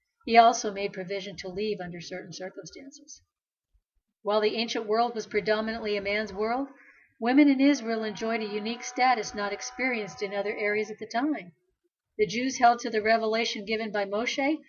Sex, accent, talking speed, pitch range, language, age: female, American, 170 wpm, 215-275 Hz, English, 50-69